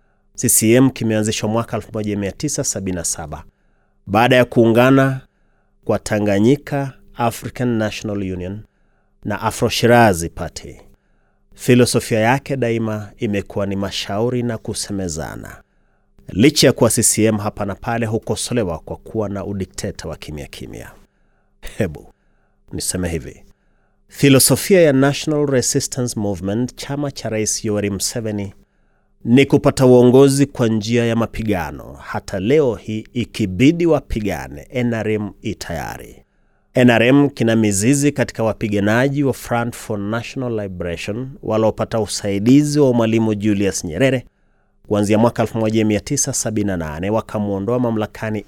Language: Swahili